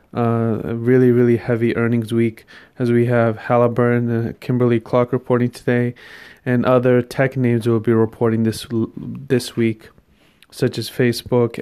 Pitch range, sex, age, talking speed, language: 110-120 Hz, male, 30-49, 150 wpm, English